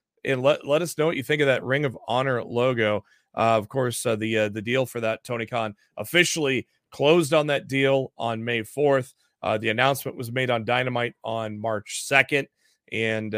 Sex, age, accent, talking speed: male, 30-49, American, 200 wpm